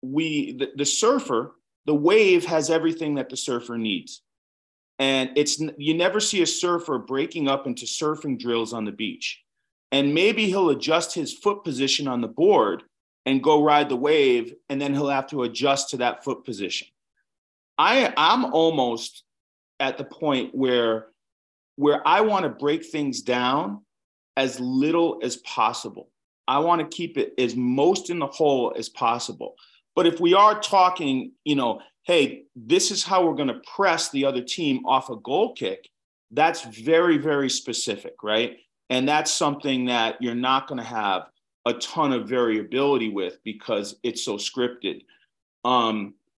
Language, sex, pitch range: Finnish, male, 125-175 Hz